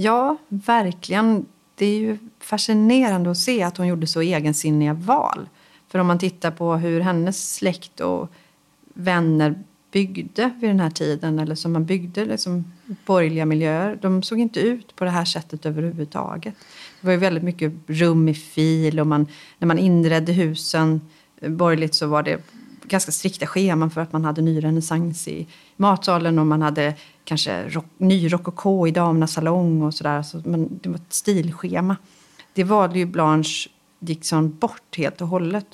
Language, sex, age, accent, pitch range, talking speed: Swedish, female, 40-59, native, 155-190 Hz, 165 wpm